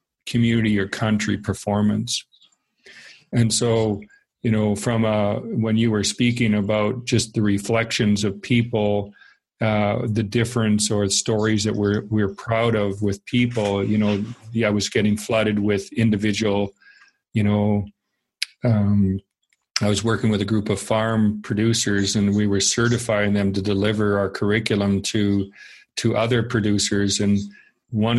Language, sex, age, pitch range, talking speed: English, male, 40-59, 100-115 Hz, 145 wpm